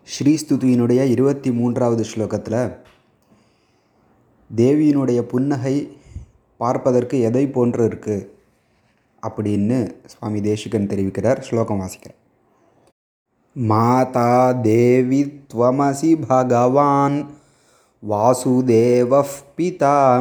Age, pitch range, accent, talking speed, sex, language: 20-39, 120-140 Hz, native, 60 wpm, male, Tamil